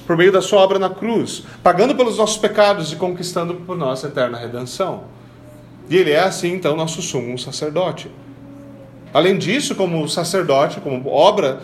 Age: 40-59